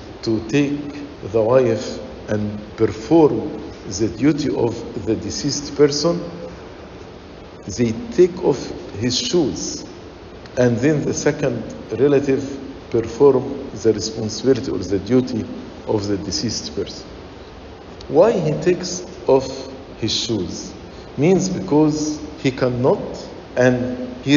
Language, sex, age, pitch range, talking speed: English, male, 50-69, 120-170 Hz, 110 wpm